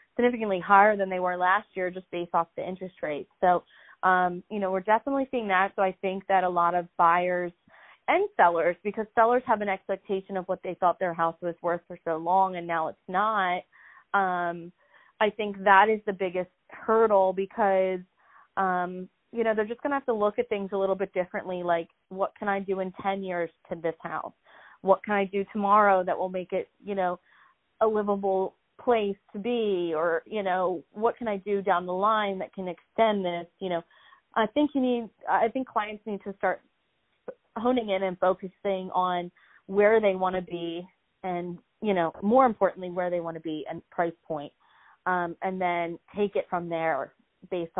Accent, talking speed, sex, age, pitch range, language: American, 200 wpm, female, 30-49, 175-205 Hz, English